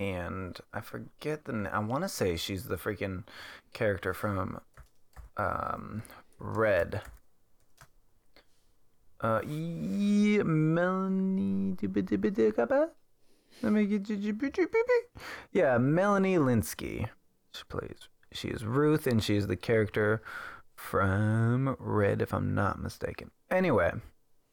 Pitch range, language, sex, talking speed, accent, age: 100-135 Hz, English, male, 105 wpm, American, 20-39